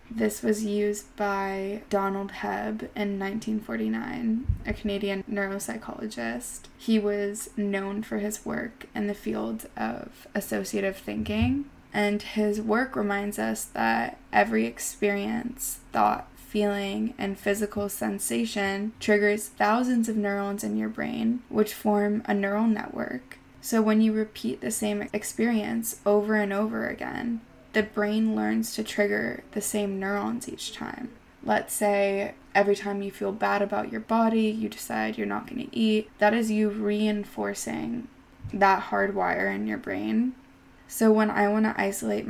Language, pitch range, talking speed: English, 195-220 Hz, 145 wpm